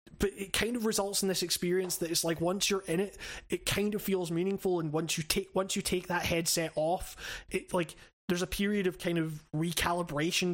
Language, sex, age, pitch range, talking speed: English, male, 20-39, 155-185 Hz, 220 wpm